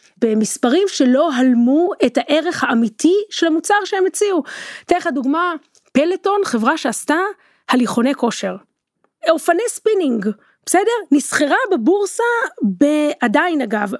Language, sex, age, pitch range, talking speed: Hebrew, female, 30-49, 255-360 Hz, 105 wpm